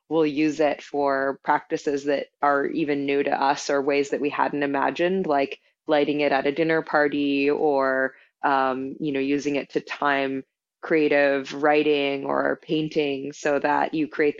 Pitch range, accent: 140-155 Hz, American